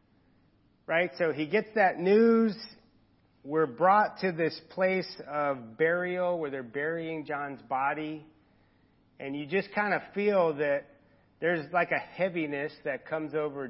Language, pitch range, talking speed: English, 150-205 Hz, 140 wpm